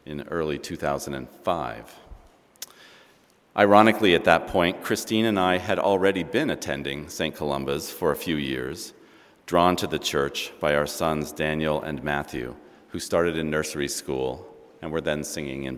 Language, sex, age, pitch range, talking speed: English, male, 40-59, 70-95 Hz, 150 wpm